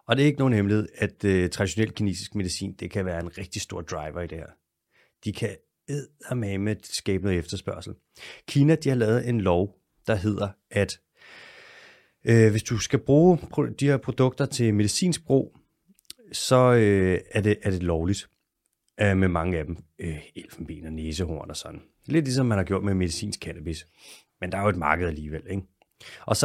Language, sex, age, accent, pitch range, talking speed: English, male, 30-49, Danish, 90-120 Hz, 190 wpm